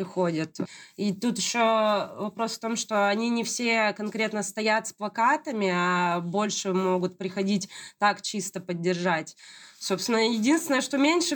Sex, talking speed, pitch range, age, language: female, 135 wpm, 185-230 Hz, 20-39, Russian